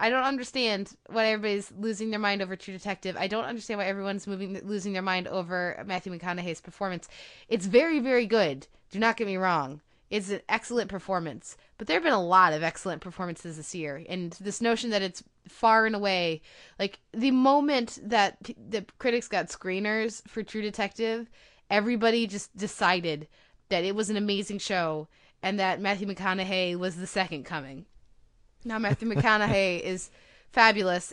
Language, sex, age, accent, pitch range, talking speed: English, female, 20-39, American, 185-220 Hz, 170 wpm